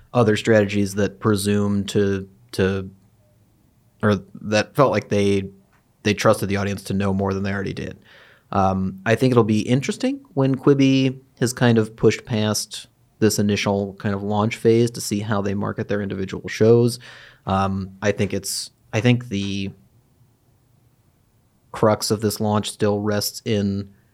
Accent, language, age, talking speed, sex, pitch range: American, English, 30-49, 155 wpm, male, 100-115 Hz